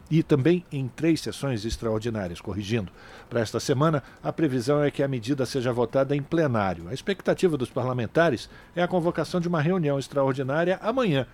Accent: Brazilian